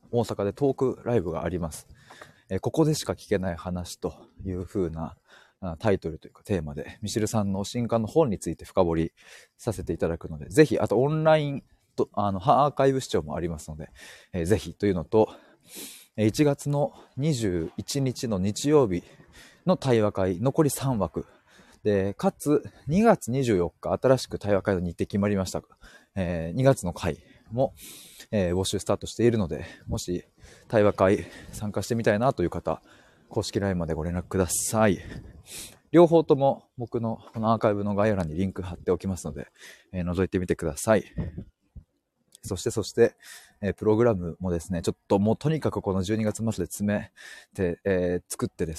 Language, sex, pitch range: Japanese, male, 85-115 Hz